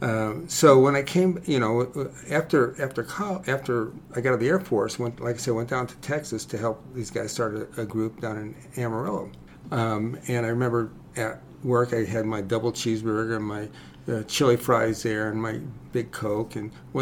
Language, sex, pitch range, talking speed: English, male, 110-135 Hz, 210 wpm